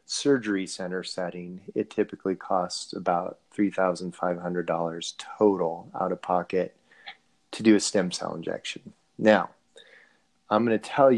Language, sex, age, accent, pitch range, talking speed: English, male, 30-49, American, 95-120 Hz, 125 wpm